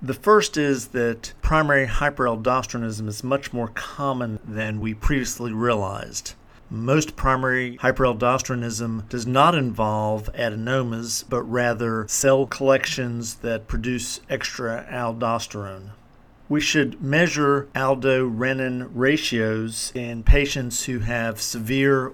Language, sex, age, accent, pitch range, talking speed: English, male, 50-69, American, 115-135 Hz, 105 wpm